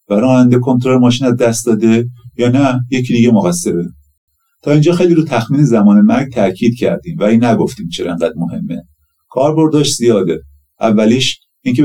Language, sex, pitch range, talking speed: Persian, male, 105-150 Hz, 145 wpm